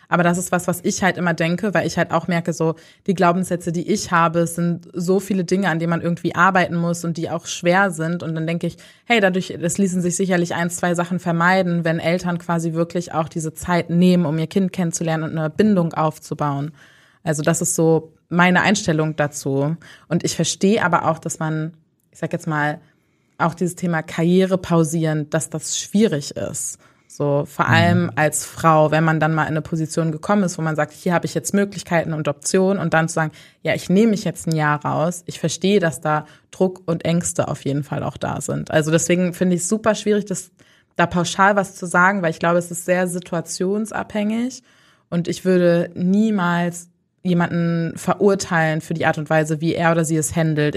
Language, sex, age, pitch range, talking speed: German, female, 20-39, 160-180 Hz, 210 wpm